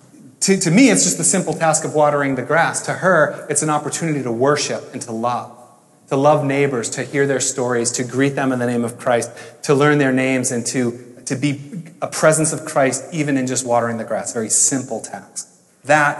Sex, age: male, 30-49